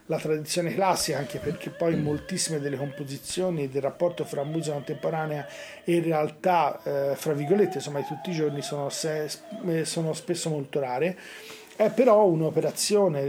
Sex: male